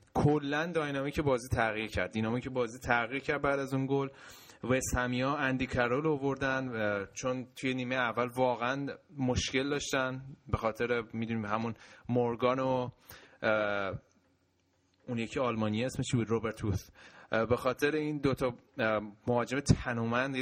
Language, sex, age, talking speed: Persian, male, 30-49, 130 wpm